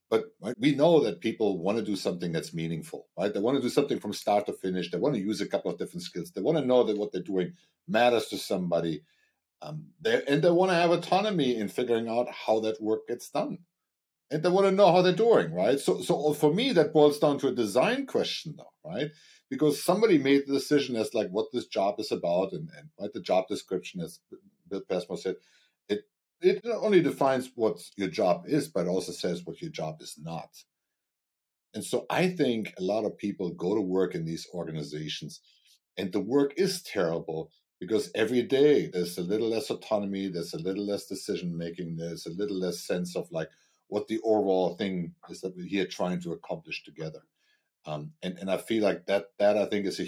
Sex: male